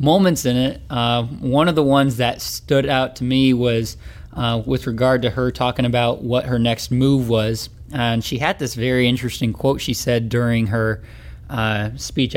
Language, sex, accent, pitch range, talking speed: English, male, American, 120-140 Hz, 190 wpm